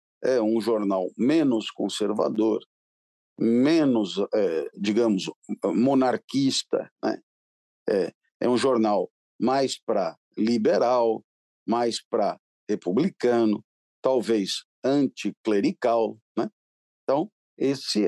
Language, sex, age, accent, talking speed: Portuguese, male, 50-69, Brazilian, 85 wpm